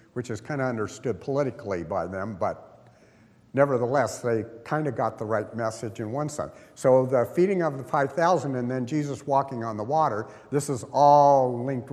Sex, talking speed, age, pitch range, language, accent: male, 185 wpm, 50-69, 100-135 Hz, English, American